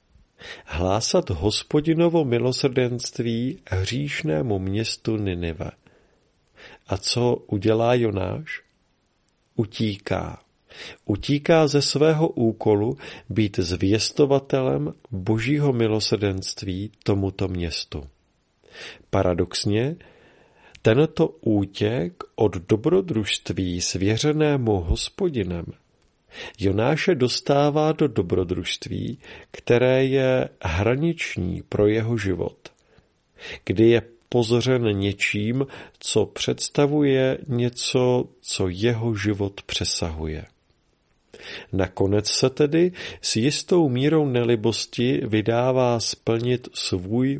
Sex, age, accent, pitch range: male, 40-59, native, 100-130 Hz